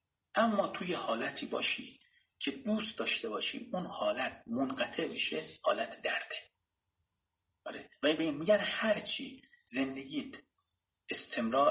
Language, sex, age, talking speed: Persian, male, 50-69, 110 wpm